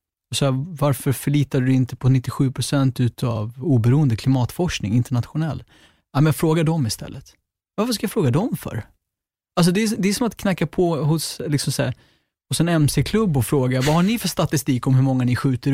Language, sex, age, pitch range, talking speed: Swedish, male, 30-49, 125-155 Hz, 200 wpm